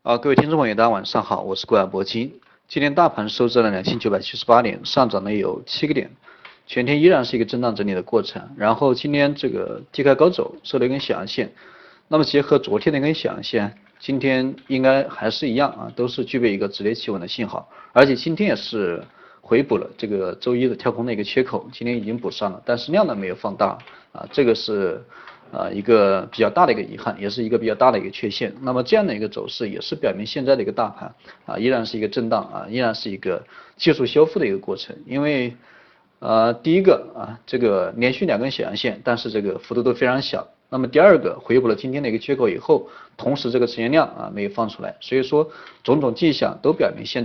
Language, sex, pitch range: Chinese, male, 115-145 Hz